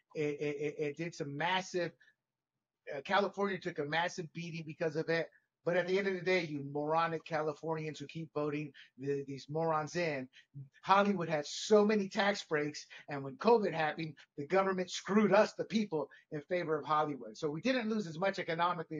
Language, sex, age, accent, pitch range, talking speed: English, male, 50-69, American, 155-195 Hz, 185 wpm